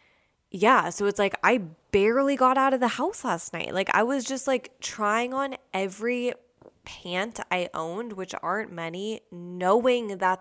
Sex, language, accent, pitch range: female, English, American, 175-215 Hz